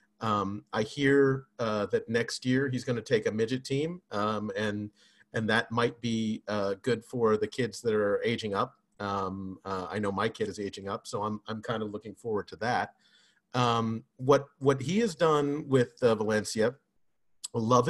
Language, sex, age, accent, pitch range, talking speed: English, male, 40-59, American, 110-140 Hz, 190 wpm